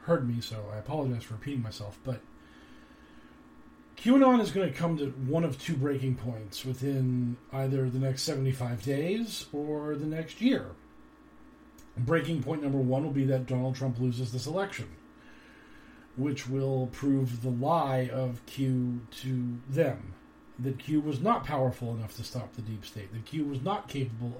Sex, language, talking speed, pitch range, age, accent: male, English, 165 wpm, 120-145 Hz, 40-59, American